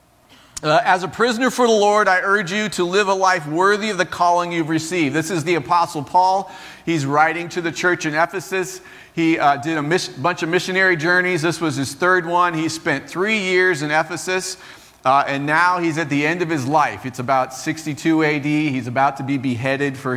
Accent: American